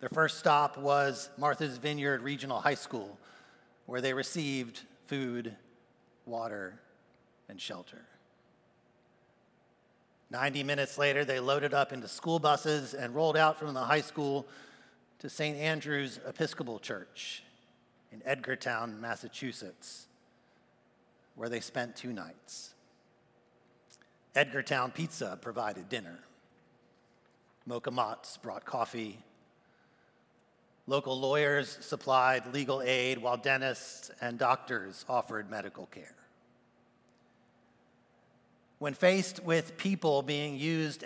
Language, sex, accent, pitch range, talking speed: English, male, American, 120-145 Hz, 105 wpm